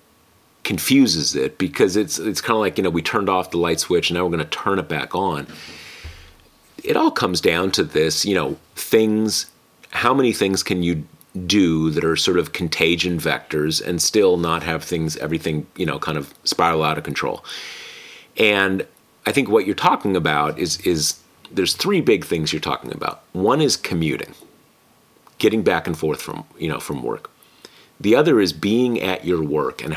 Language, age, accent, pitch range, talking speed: English, 40-59, American, 80-110 Hz, 190 wpm